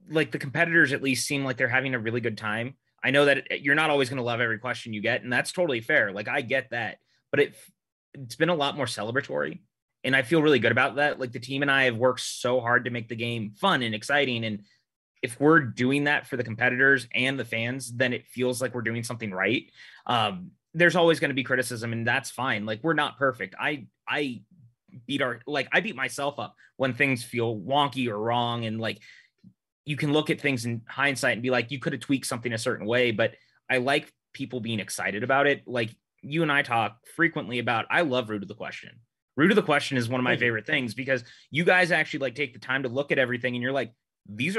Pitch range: 120-140 Hz